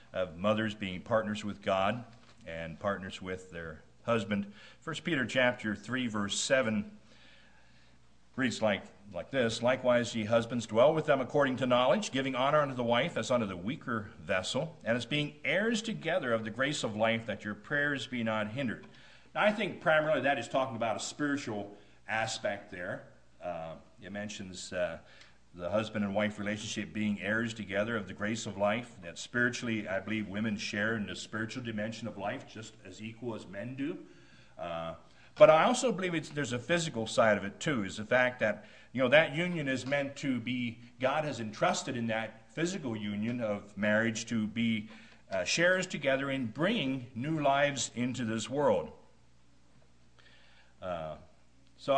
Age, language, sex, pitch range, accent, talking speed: 50-69, English, male, 105-135 Hz, American, 175 wpm